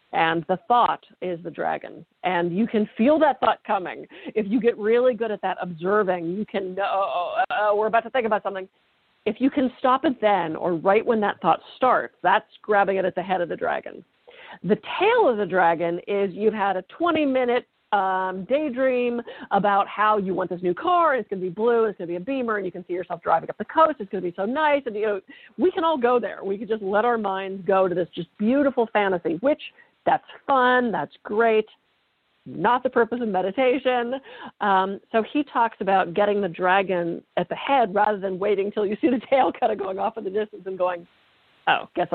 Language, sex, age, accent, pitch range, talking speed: English, female, 50-69, American, 185-240 Hz, 230 wpm